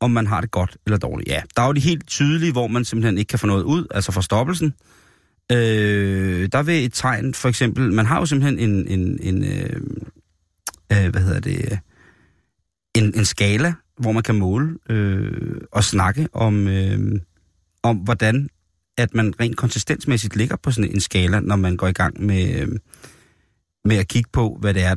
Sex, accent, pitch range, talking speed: male, native, 95-120 Hz, 190 wpm